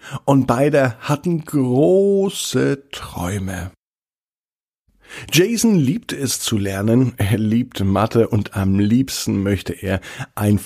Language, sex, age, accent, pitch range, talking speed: German, male, 50-69, German, 100-135 Hz, 105 wpm